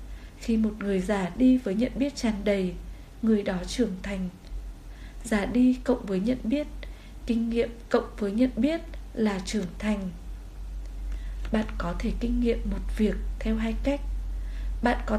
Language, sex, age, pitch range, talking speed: Vietnamese, female, 20-39, 195-250 Hz, 160 wpm